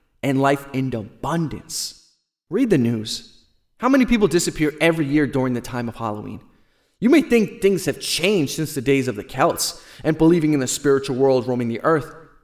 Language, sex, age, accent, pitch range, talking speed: English, male, 30-49, American, 130-170 Hz, 190 wpm